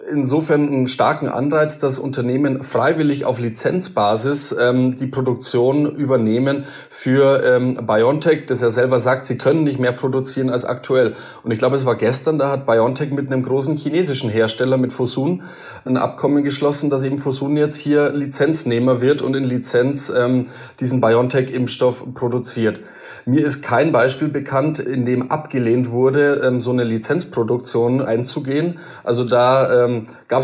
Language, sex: German, male